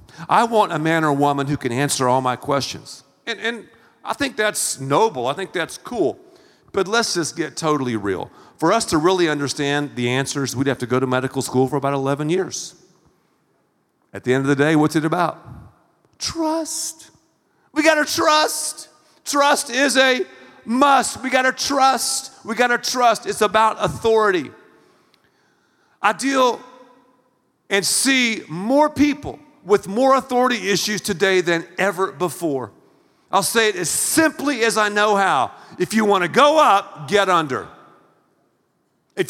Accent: American